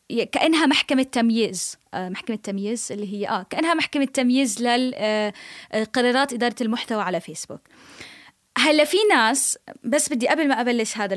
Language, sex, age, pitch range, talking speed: Arabic, female, 20-39, 210-270 Hz, 130 wpm